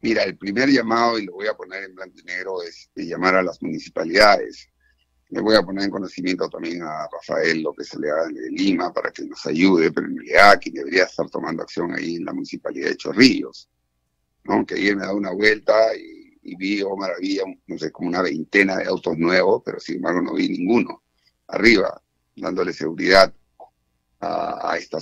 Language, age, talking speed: Spanish, 50-69, 205 wpm